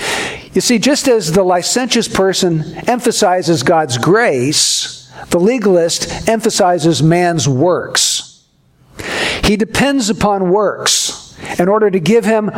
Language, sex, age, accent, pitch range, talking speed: English, male, 60-79, American, 175-225 Hz, 115 wpm